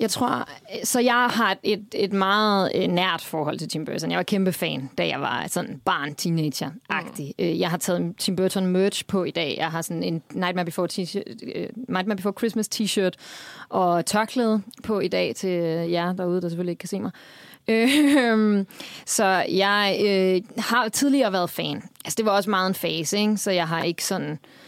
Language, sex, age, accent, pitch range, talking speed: Danish, female, 30-49, native, 180-220 Hz, 185 wpm